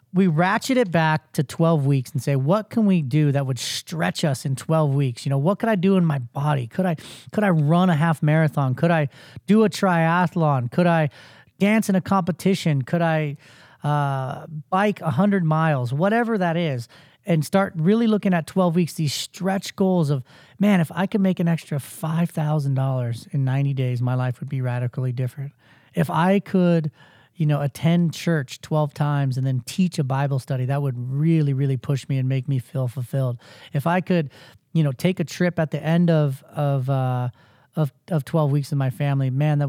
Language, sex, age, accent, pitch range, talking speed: English, male, 30-49, American, 135-170 Hz, 205 wpm